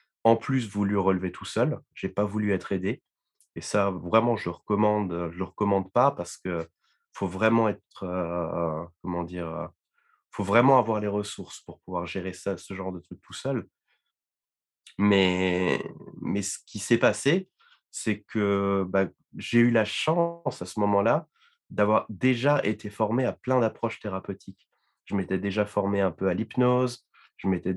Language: French